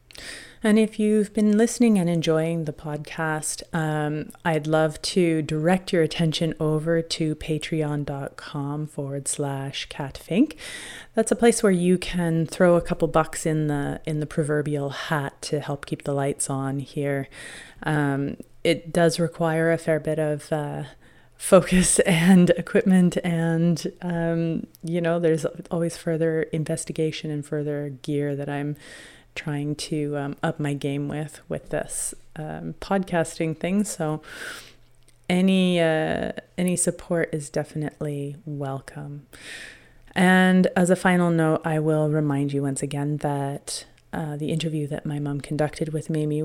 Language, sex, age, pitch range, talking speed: English, female, 30-49, 145-170 Hz, 145 wpm